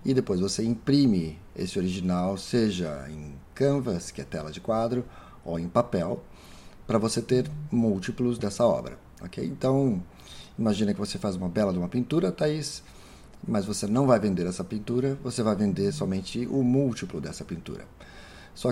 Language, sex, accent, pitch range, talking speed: Portuguese, male, Brazilian, 90-125 Hz, 165 wpm